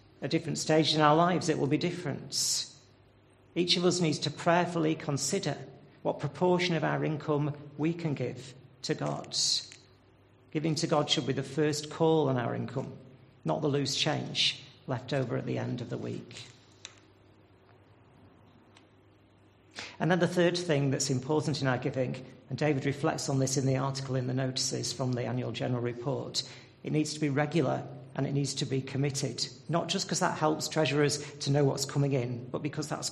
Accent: British